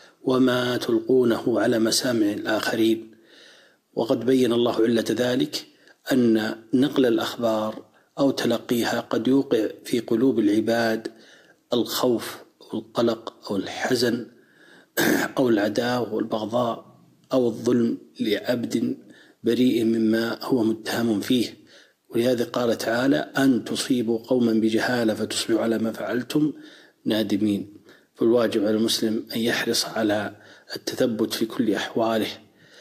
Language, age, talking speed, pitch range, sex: Arabic, 40-59, 105 wpm, 110-130 Hz, male